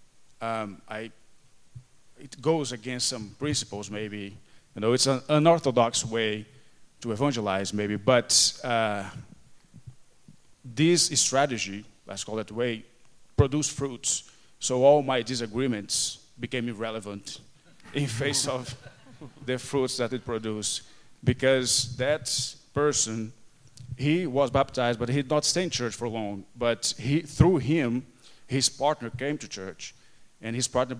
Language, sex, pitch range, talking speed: English, male, 115-135 Hz, 135 wpm